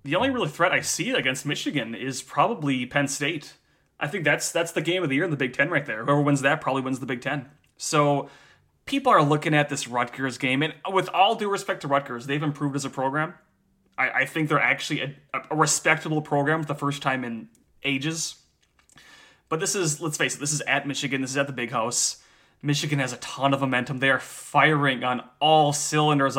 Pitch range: 135-160 Hz